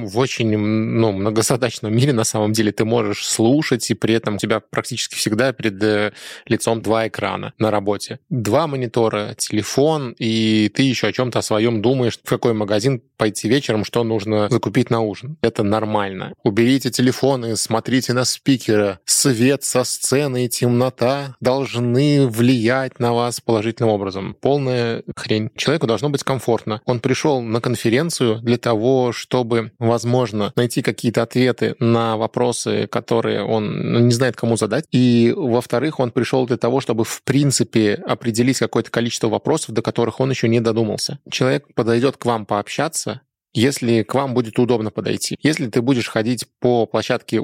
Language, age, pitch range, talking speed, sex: Russian, 20-39, 110-130 Hz, 155 wpm, male